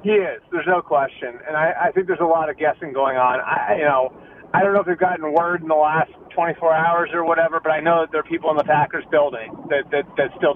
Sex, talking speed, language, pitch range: male, 275 wpm, English, 155-185 Hz